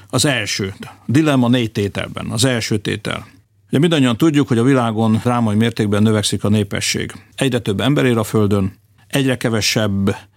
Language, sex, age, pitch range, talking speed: Hungarian, male, 50-69, 100-120 Hz, 155 wpm